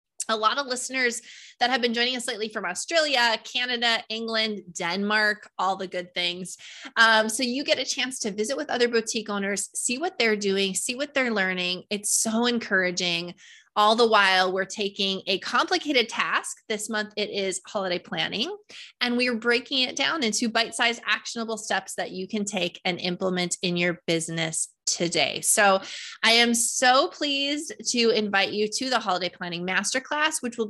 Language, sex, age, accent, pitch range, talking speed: English, female, 20-39, American, 190-240 Hz, 180 wpm